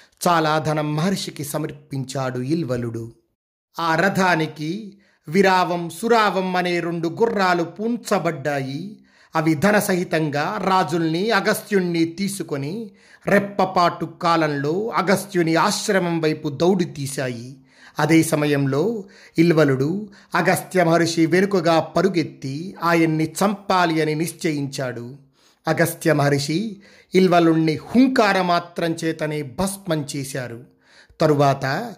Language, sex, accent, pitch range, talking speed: Telugu, male, native, 150-185 Hz, 85 wpm